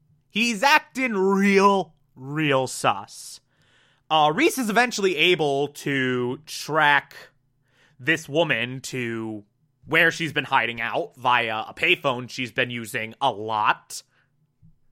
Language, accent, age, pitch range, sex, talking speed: English, American, 30-49, 135-185 Hz, male, 115 wpm